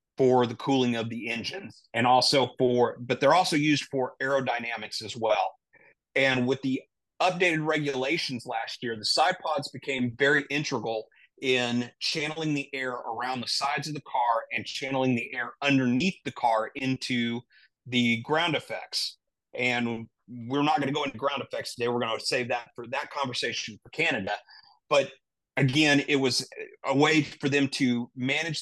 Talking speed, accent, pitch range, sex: 170 wpm, American, 120-145 Hz, male